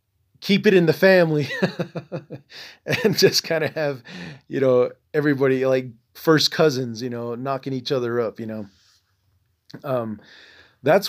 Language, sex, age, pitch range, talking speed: English, male, 30-49, 110-145 Hz, 140 wpm